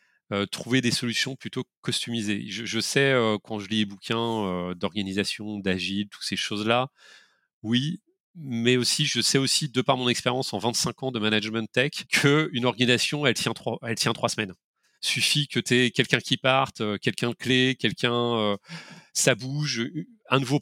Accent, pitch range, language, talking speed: French, 110-140 Hz, French, 185 wpm